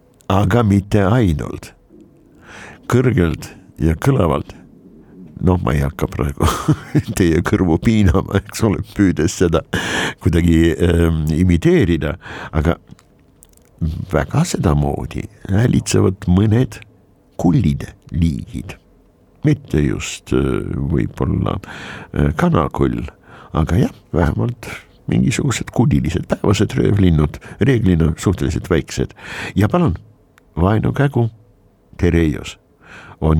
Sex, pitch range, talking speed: male, 80-105 Hz, 95 wpm